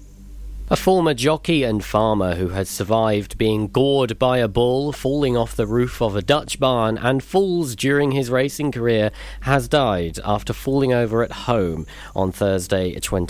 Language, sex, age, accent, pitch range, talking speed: English, male, 40-59, British, 95-125 Hz, 160 wpm